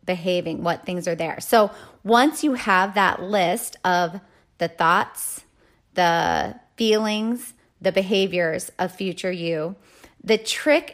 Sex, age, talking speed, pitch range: female, 30-49, 125 wpm, 175-210 Hz